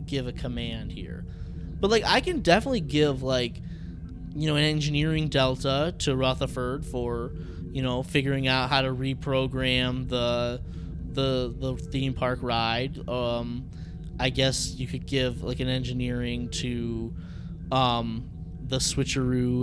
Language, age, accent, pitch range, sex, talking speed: English, 20-39, American, 115-140 Hz, male, 140 wpm